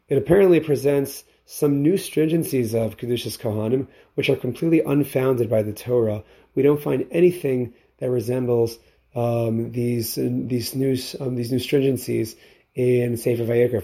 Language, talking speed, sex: English, 145 wpm, male